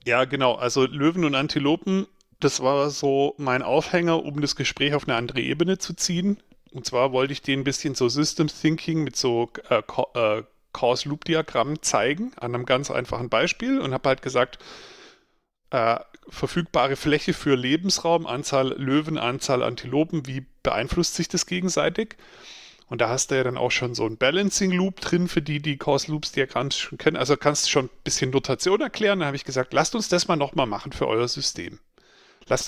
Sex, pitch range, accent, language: male, 125-160 Hz, German, German